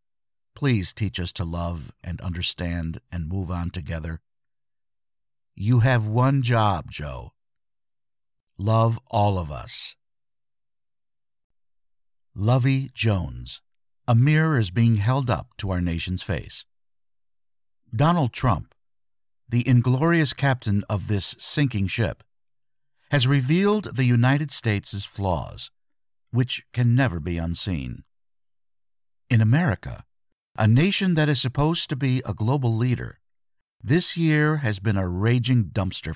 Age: 50-69